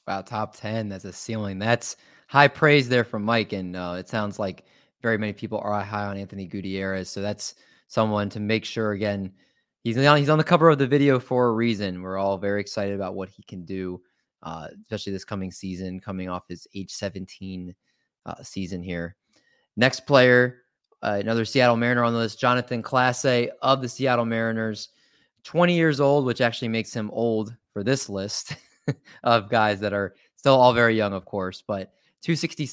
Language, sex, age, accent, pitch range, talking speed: English, male, 20-39, American, 100-125 Hz, 190 wpm